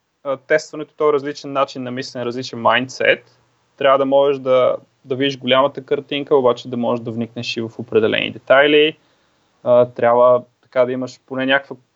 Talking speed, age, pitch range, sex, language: 160 wpm, 20-39, 125-145 Hz, male, Bulgarian